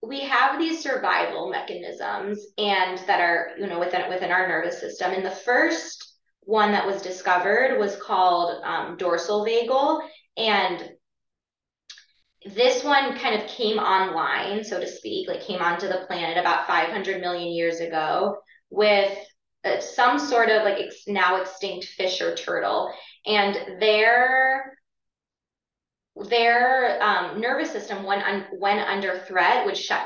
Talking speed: 145 wpm